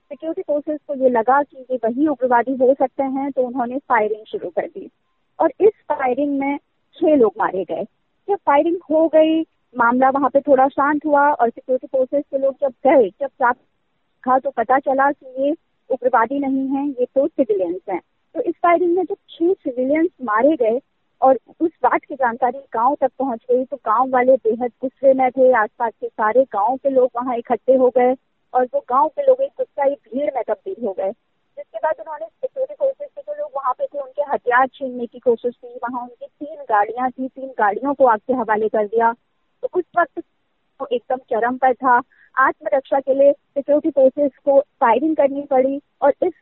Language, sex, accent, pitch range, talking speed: Hindi, female, native, 245-290 Hz, 200 wpm